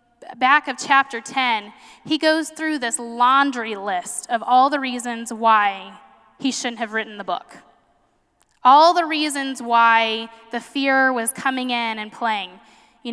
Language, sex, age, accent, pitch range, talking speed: English, female, 10-29, American, 225-270 Hz, 150 wpm